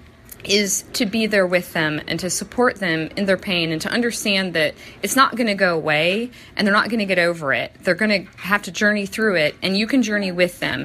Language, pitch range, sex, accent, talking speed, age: English, 185-235 Hz, female, American, 250 wpm, 40-59